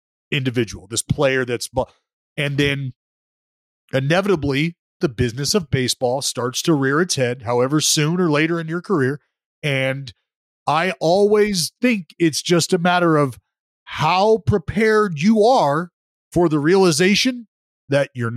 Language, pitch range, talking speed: English, 130-205 Hz, 135 wpm